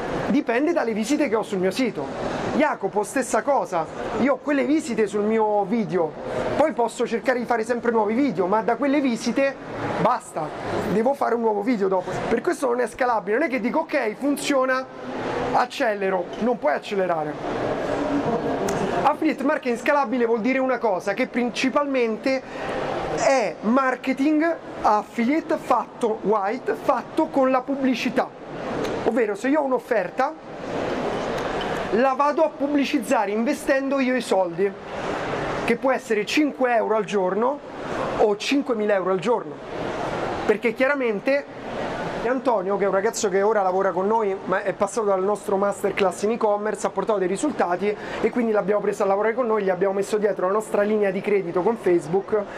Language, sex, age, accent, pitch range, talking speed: Italian, male, 30-49, native, 205-265 Hz, 155 wpm